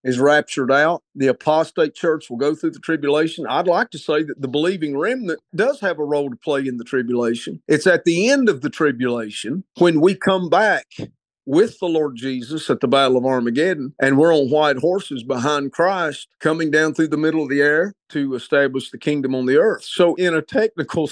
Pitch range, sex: 135-165 Hz, male